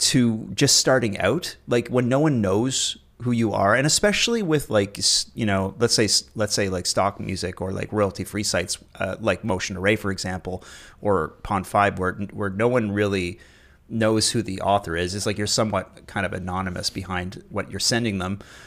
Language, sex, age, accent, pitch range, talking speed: English, male, 30-49, American, 95-120 Hz, 195 wpm